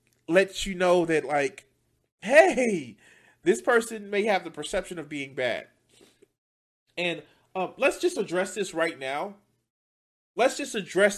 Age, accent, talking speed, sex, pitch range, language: 30-49, American, 140 wpm, male, 150-215 Hz, English